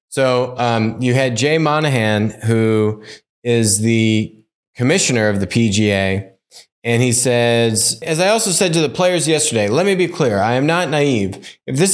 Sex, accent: male, American